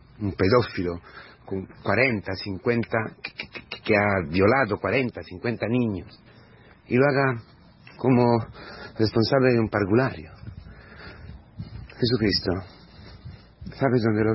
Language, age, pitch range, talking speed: Spanish, 40-59, 100-125 Hz, 105 wpm